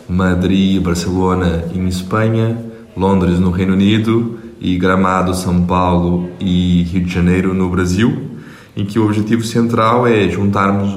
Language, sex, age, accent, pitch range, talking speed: Portuguese, male, 20-39, Brazilian, 85-100 Hz, 135 wpm